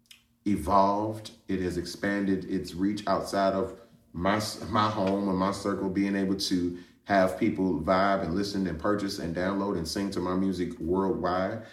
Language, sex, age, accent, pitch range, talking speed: English, male, 30-49, American, 95-115 Hz, 165 wpm